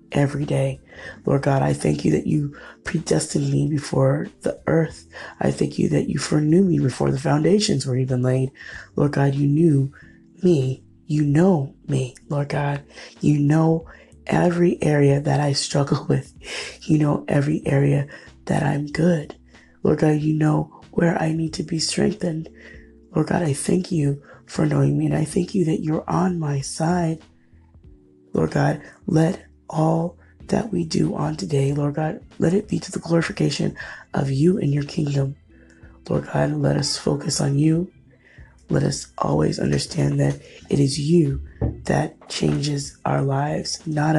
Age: 20-39